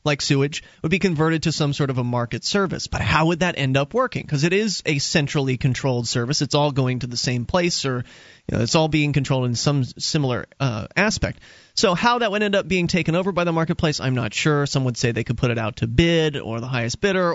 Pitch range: 140-190 Hz